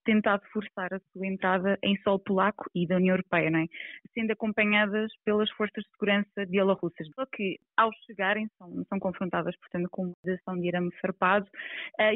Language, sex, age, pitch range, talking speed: Portuguese, female, 20-39, 185-220 Hz, 175 wpm